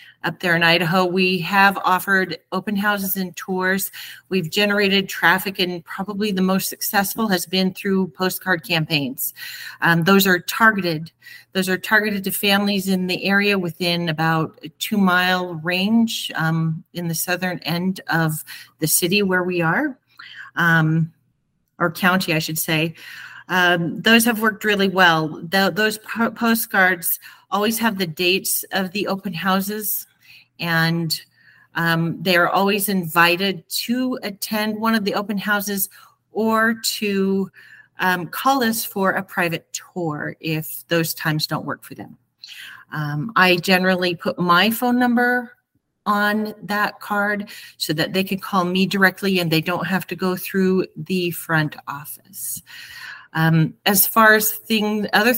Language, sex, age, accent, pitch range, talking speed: English, female, 40-59, American, 175-210 Hz, 145 wpm